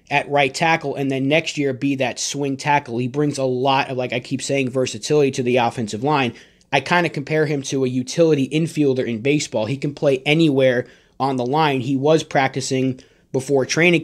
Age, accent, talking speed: 30-49, American, 205 wpm